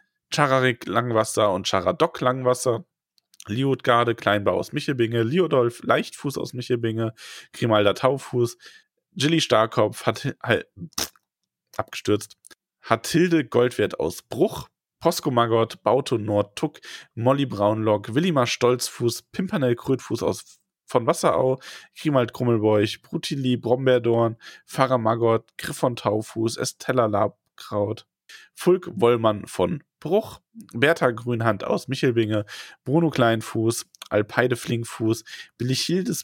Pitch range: 115-140 Hz